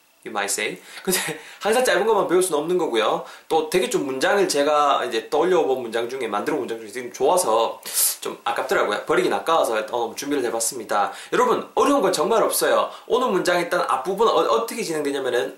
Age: 20-39